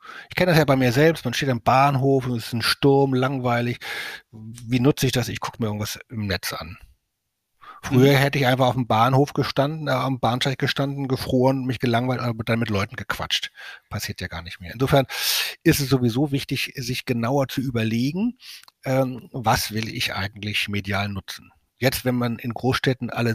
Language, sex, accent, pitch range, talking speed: German, male, German, 110-140 Hz, 190 wpm